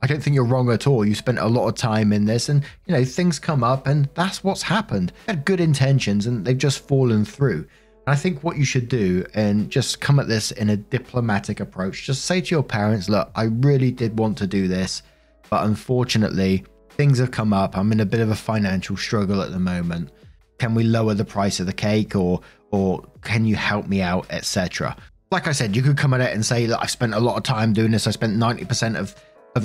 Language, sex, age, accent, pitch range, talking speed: English, male, 20-39, British, 100-130 Hz, 240 wpm